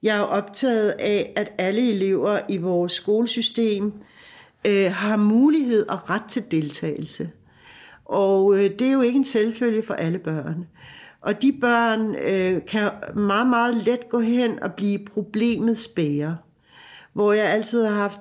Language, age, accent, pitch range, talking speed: Danish, 60-79, native, 190-230 Hz, 145 wpm